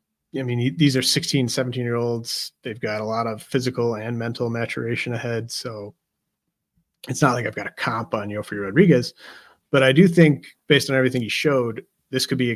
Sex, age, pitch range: male, 30-49, 115-140 Hz